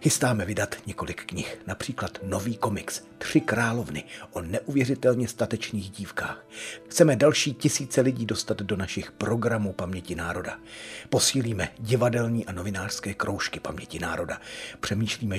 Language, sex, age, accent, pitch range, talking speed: Czech, male, 40-59, native, 100-130 Hz, 120 wpm